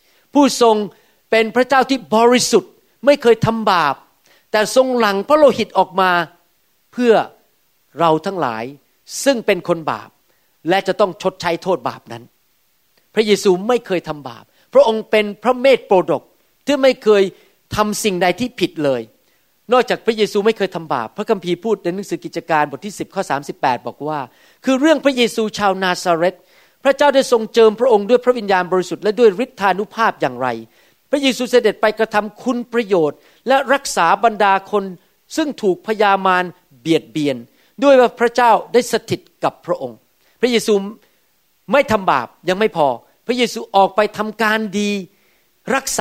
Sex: male